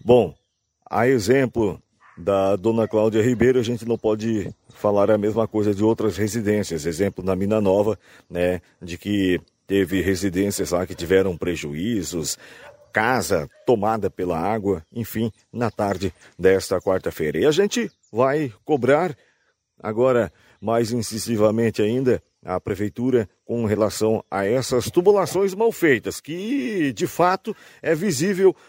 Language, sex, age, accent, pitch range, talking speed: Portuguese, male, 50-69, Brazilian, 105-140 Hz, 130 wpm